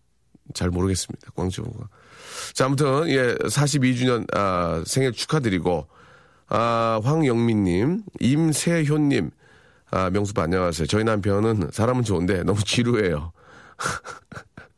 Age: 40-59